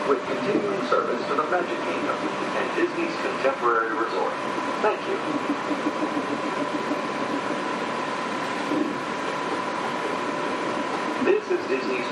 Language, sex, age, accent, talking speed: English, male, 50-69, American, 80 wpm